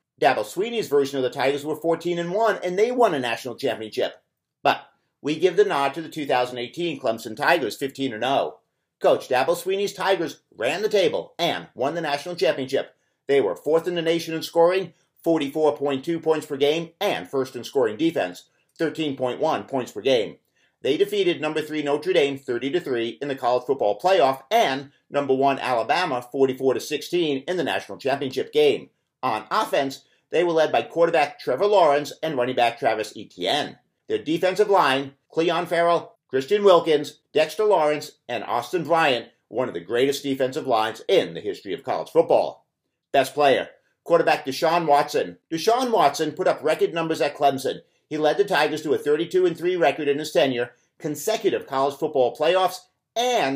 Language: English